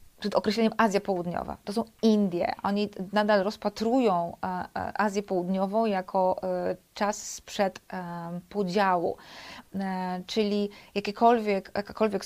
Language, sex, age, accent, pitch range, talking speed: Polish, female, 30-49, native, 190-225 Hz, 90 wpm